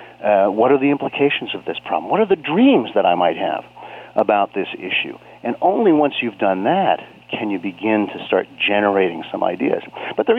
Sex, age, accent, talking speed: male, 40-59, American, 200 wpm